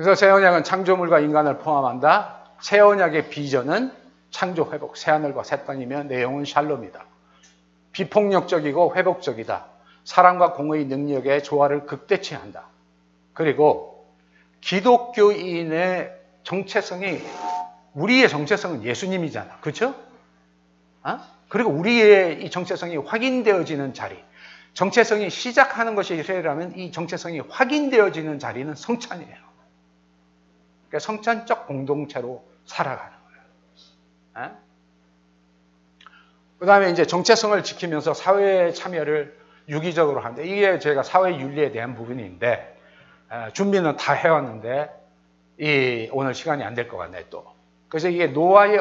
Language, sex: Korean, male